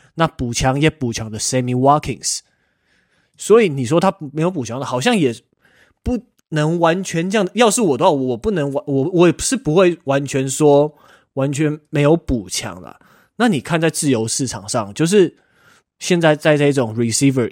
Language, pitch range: Chinese, 125-155 Hz